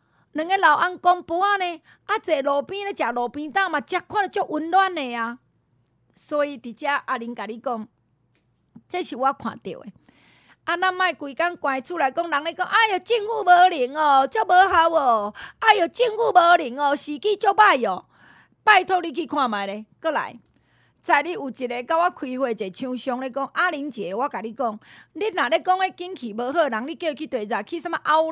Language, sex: Chinese, female